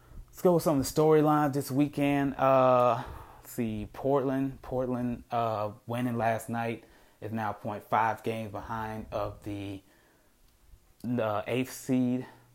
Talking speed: 140 wpm